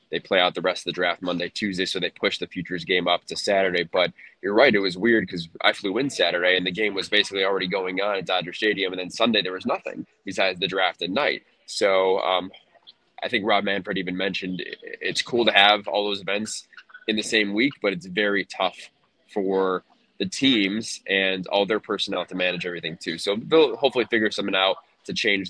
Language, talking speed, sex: English, 220 wpm, male